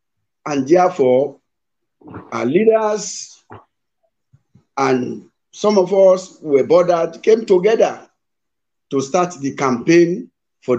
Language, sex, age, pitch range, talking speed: English, male, 50-69, 140-205 Hz, 100 wpm